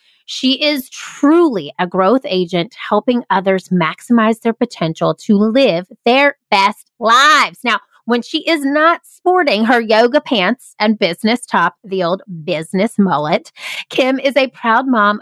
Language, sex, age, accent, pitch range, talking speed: English, female, 30-49, American, 185-245 Hz, 145 wpm